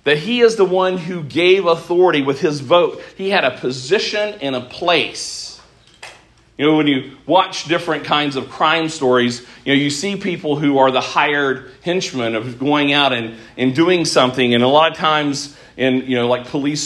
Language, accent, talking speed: English, American, 195 wpm